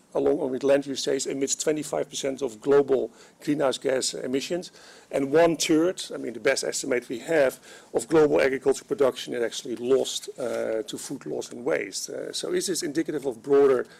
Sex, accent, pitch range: male, Dutch, 140-205 Hz